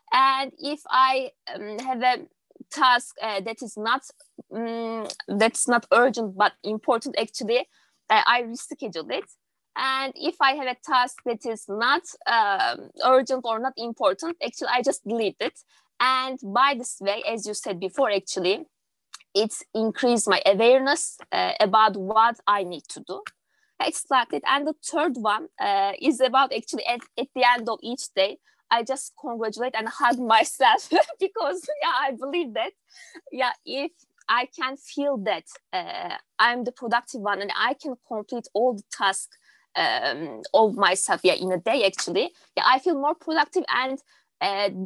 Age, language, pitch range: 20-39, English, 220-290 Hz